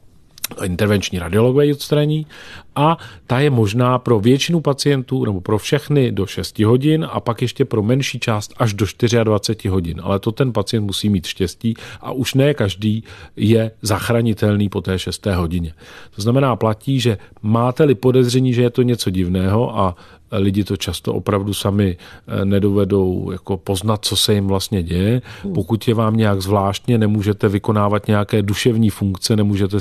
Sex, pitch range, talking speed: male, 100-120 Hz, 155 wpm